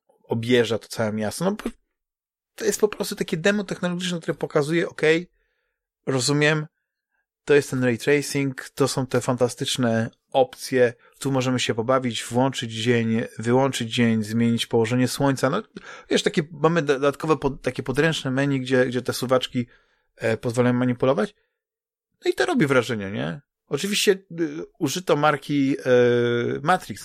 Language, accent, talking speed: Polish, native, 145 wpm